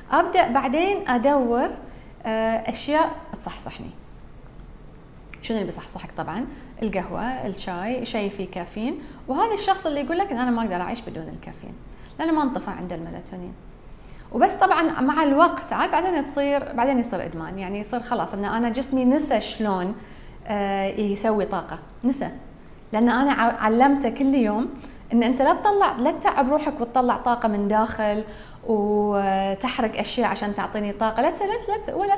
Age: 30-49